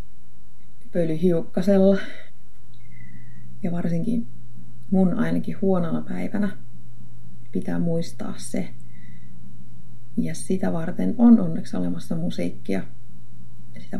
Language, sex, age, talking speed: Finnish, female, 30-49, 75 wpm